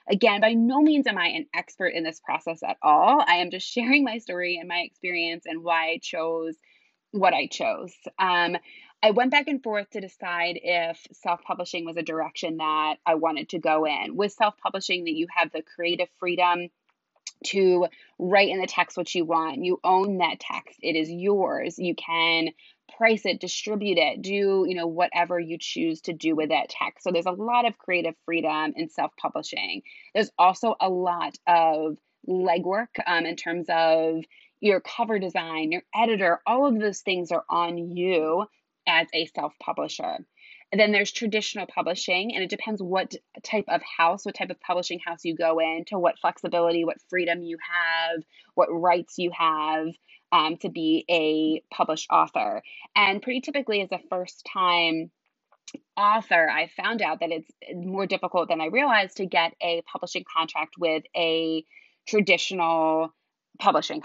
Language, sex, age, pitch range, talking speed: English, female, 20-39, 165-195 Hz, 175 wpm